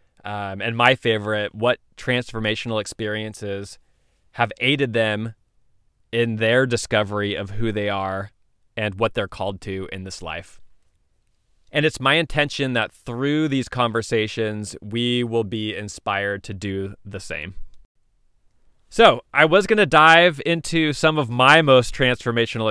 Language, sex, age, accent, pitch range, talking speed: English, male, 20-39, American, 105-125 Hz, 140 wpm